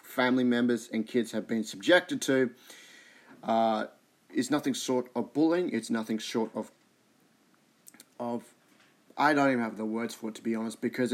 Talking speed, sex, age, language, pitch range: 165 wpm, male, 30-49, English, 115-170 Hz